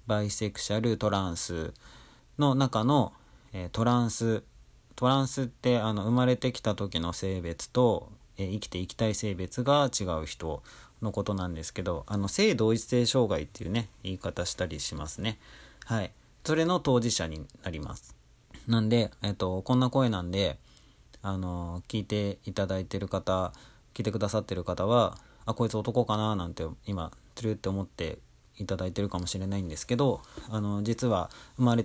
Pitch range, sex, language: 95-120 Hz, male, Japanese